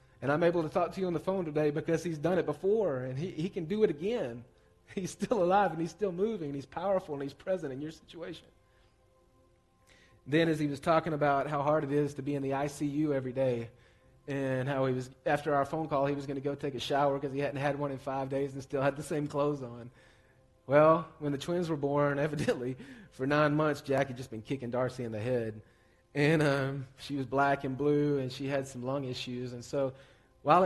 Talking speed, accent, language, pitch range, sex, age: 240 wpm, American, English, 135-160 Hz, male, 30-49